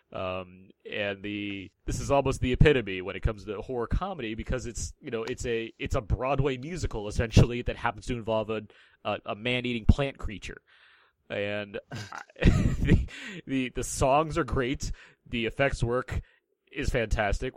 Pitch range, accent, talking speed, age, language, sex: 105-135 Hz, American, 160 wpm, 30-49, English, male